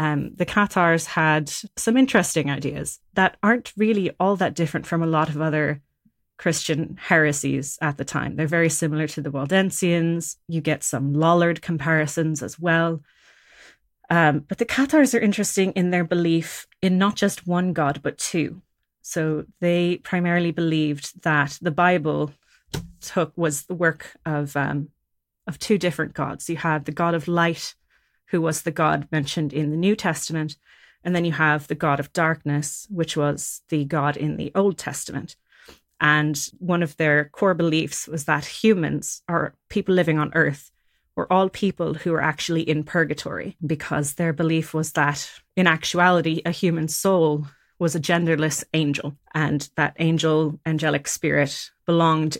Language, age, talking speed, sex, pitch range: English, 30-49, 165 wpm, female, 150-175 Hz